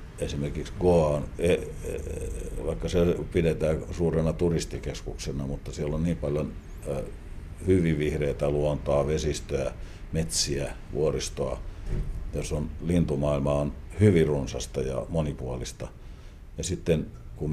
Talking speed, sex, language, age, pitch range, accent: 105 wpm, male, Finnish, 60-79, 75-95 Hz, native